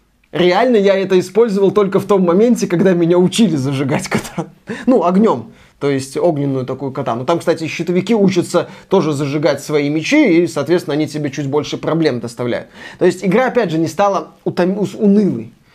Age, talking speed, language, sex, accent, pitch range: 20-39, 170 wpm, Russian, male, native, 160-215 Hz